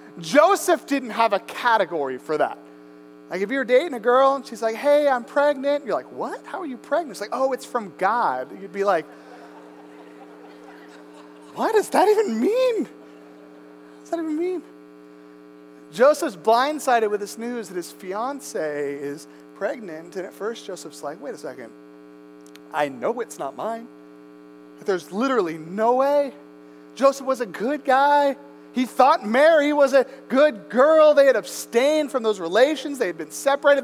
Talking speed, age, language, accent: 165 wpm, 30-49, English, American